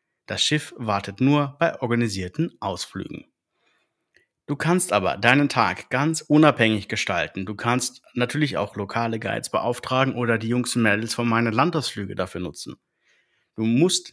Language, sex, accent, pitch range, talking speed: German, male, German, 110-150 Hz, 145 wpm